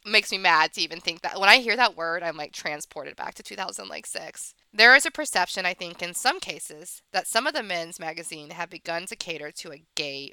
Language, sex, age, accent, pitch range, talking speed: English, female, 20-39, American, 165-225 Hz, 230 wpm